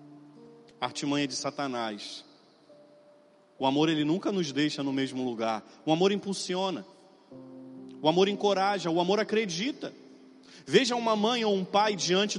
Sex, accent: male, Brazilian